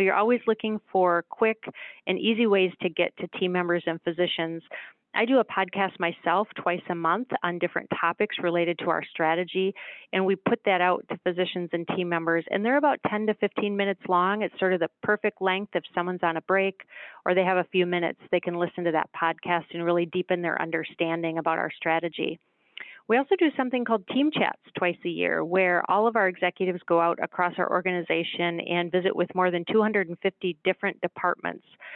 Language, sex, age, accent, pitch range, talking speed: English, female, 30-49, American, 170-195 Hz, 200 wpm